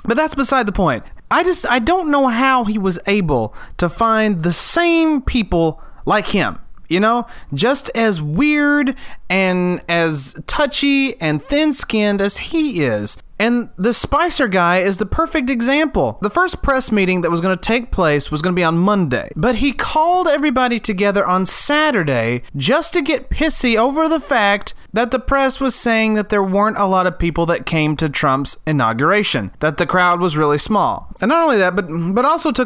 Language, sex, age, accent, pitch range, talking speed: English, male, 30-49, American, 160-250 Hz, 190 wpm